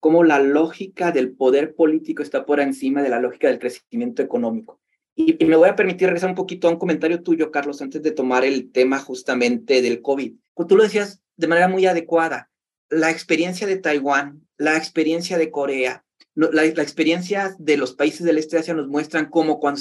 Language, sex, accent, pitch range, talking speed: Spanish, male, Mexican, 150-190 Hz, 205 wpm